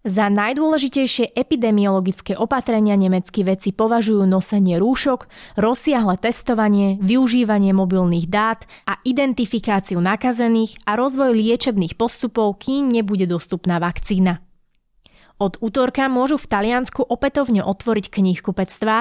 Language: Slovak